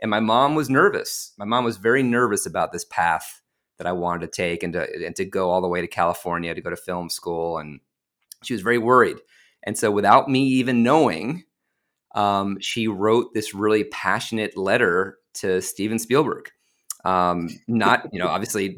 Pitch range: 100-125 Hz